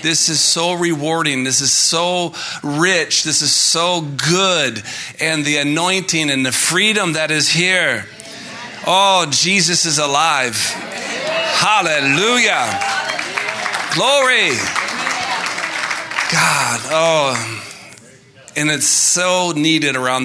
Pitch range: 150-175 Hz